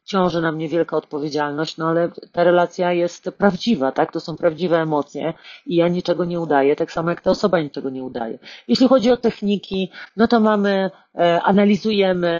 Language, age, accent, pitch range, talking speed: Polish, 40-59, native, 160-185 Hz, 180 wpm